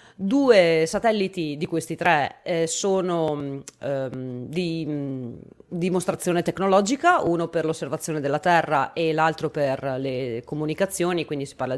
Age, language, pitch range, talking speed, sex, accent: 30-49, Italian, 145-195 Hz, 125 wpm, female, native